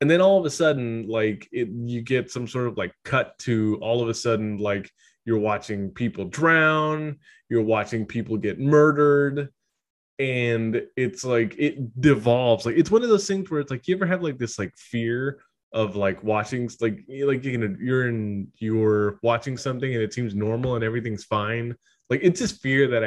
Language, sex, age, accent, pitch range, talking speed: English, male, 20-39, American, 110-140 Hz, 190 wpm